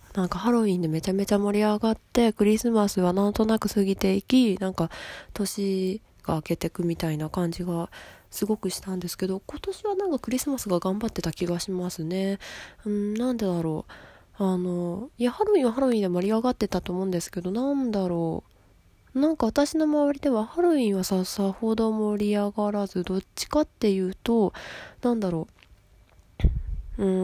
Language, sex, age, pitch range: Japanese, female, 20-39, 165-210 Hz